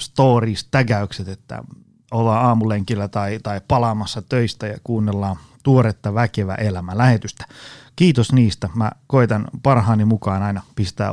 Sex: male